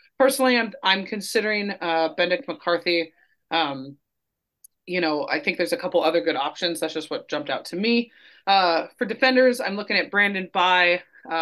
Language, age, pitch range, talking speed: English, 30-49, 165-205 Hz, 180 wpm